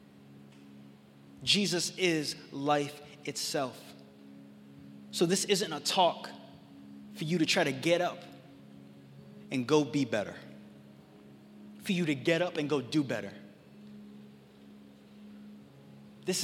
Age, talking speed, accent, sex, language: 20-39, 110 wpm, American, male, English